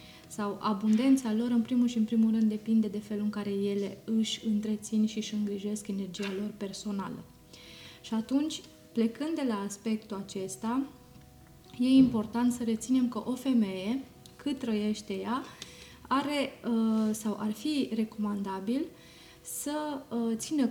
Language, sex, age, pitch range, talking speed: Romanian, female, 20-39, 210-250 Hz, 135 wpm